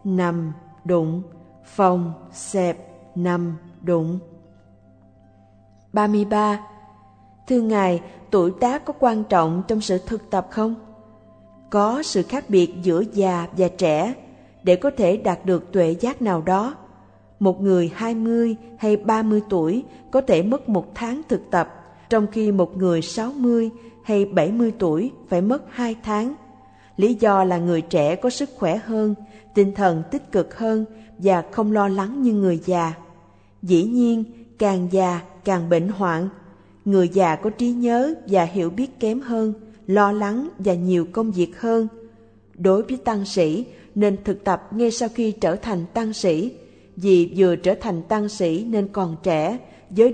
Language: Vietnamese